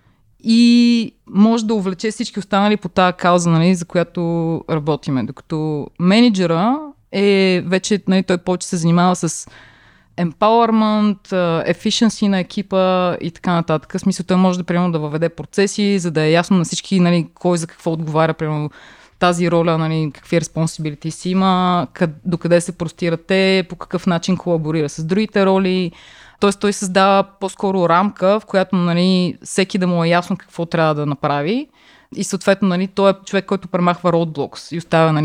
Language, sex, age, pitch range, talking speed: Bulgarian, female, 20-39, 165-195 Hz, 165 wpm